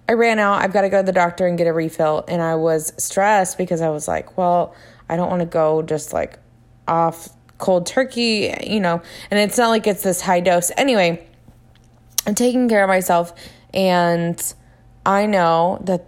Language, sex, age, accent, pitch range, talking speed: English, female, 20-39, American, 160-185 Hz, 195 wpm